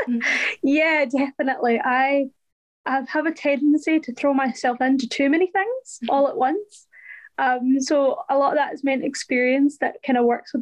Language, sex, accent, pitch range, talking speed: English, female, British, 245-280 Hz, 175 wpm